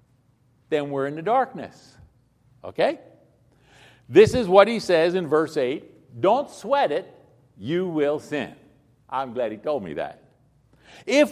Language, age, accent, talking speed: English, 60-79, American, 145 wpm